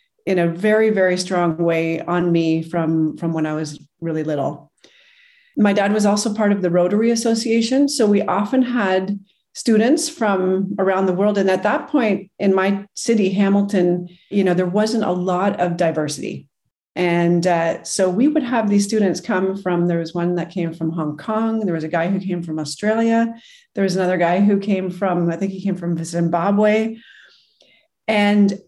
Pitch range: 175-220 Hz